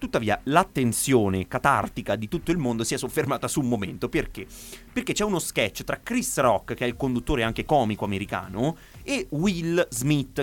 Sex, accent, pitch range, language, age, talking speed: male, native, 100-130 Hz, Italian, 30-49, 180 wpm